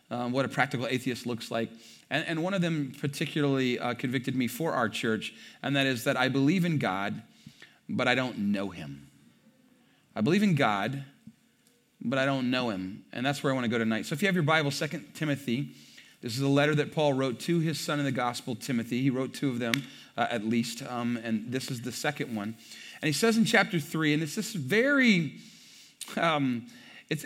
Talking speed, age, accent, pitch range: 215 wpm, 30-49, American, 130-175 Hz